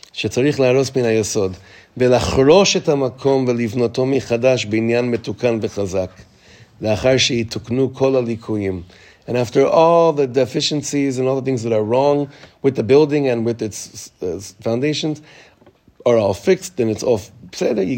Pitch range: 115-145 Hz